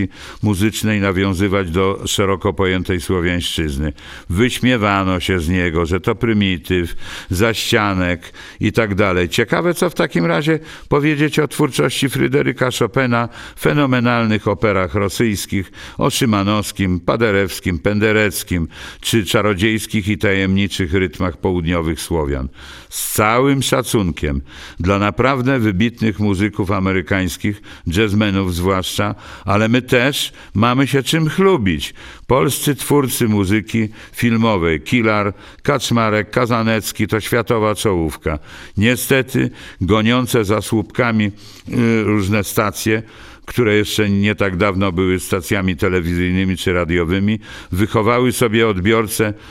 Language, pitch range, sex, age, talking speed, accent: Polish, 95-115 Hz, male, 50-69, 105 wpm, native